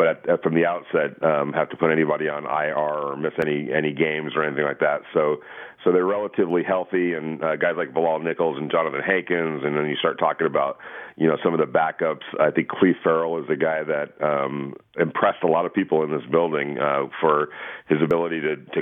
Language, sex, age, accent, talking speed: English, male, 40-59, American, 220 wpm